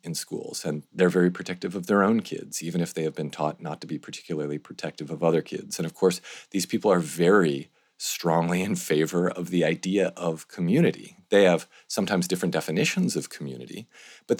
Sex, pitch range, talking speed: male, 75-90 Hz, 195 wpm